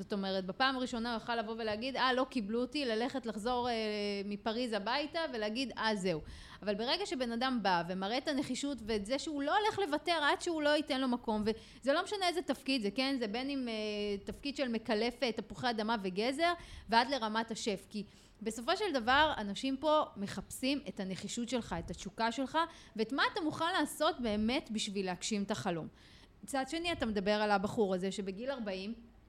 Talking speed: 190 wpm